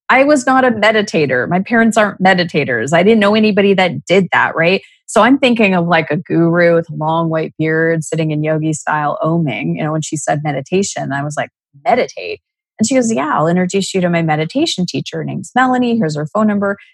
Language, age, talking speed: English, 30-49, 220 wpm